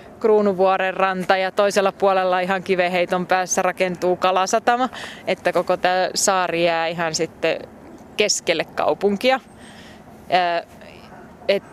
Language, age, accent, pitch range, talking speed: Finnish, 20-39, native, 170-195 Hz, 100 wpm